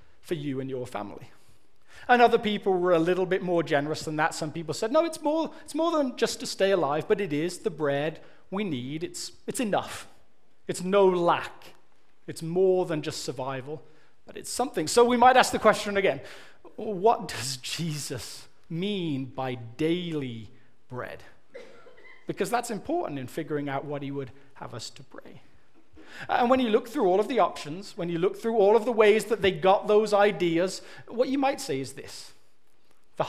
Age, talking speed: 30-49, 190 wpm